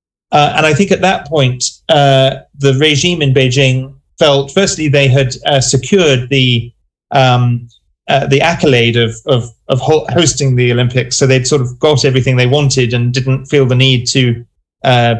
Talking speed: 175 wpm